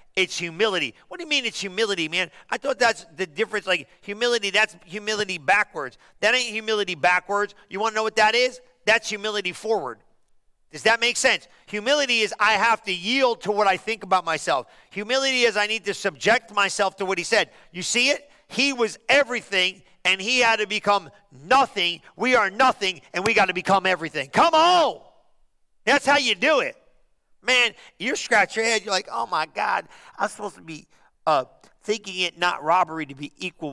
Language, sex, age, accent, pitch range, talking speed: English, male, 40-59, American, 170-225 Hz, 195 wpm